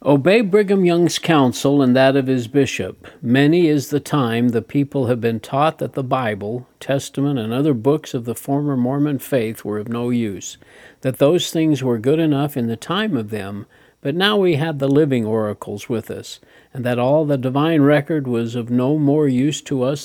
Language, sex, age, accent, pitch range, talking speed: English, male, 50-69, American, 120-150 Hz, 200 wpm